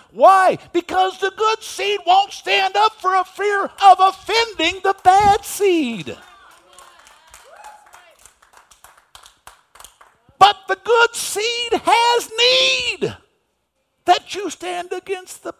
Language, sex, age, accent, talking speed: English, male, 60-79, American, 105 wpm